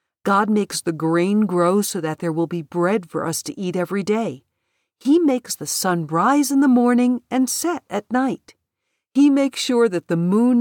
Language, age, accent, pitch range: English, 50-69, American, 170-245 Hz